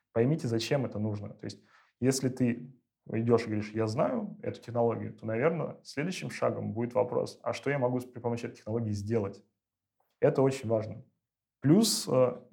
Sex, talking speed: male, 165 wpm